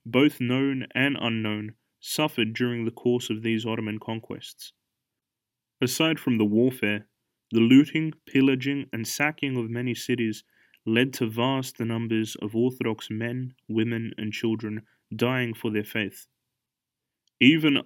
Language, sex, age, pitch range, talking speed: English, male, 20-39, 110-125 Hz, 130 wpm